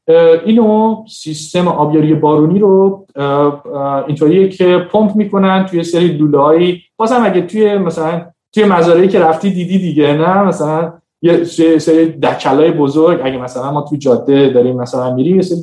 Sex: male